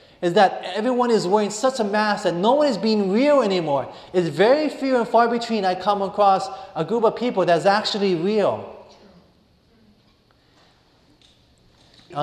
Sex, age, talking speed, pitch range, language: male, 30-49, 155 wpm, 145-205 Hz, English